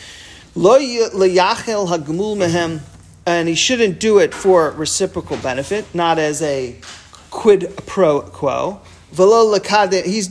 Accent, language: American, English